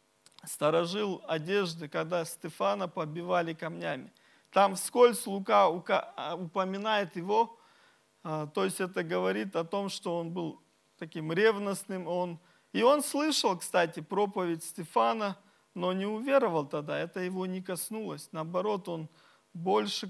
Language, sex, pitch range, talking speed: Russian, male, 170-215 Hz, 115 wpm